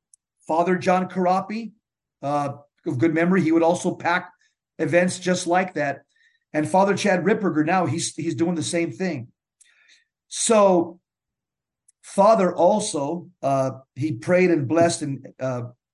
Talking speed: 135 wpm